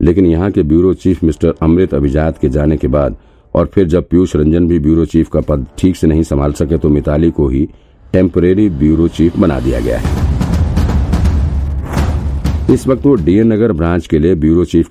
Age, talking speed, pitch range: 50-69, 195 wpm, 75-90 Hz